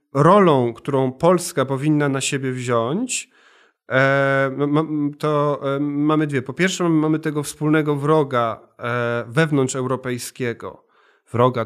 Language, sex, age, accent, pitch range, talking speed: Polish, male, 40-59, native, 125-165 Hz, 100 wpm